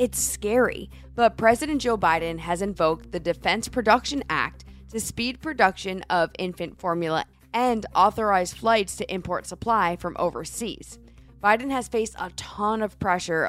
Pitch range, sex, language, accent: 165-225 Hz, female, English, American